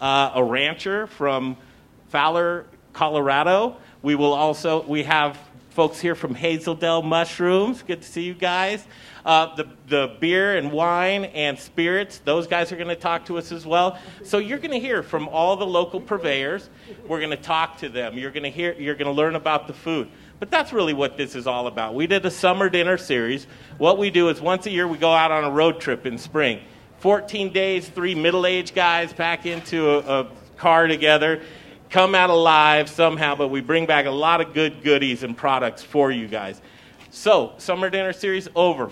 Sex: male